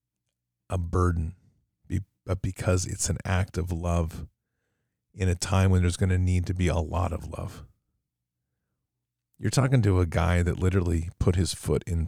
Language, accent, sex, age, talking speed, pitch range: English, American, male, 40-59, 170 wpm, 80-100 Hz